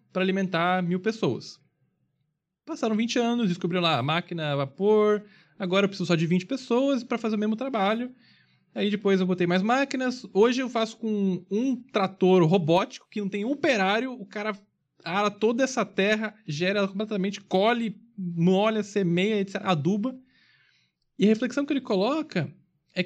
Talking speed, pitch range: 165 wpm, 160-215 Hz